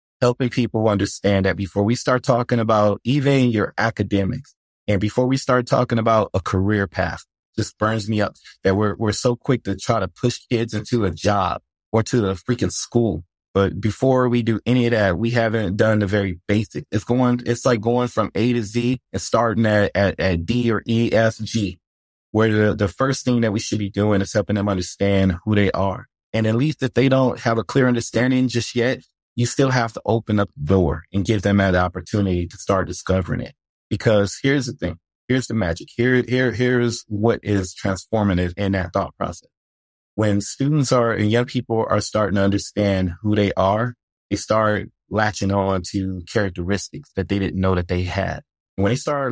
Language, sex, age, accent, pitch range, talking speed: English, male, 20-39, American, 95-120 Hz, 205 wpm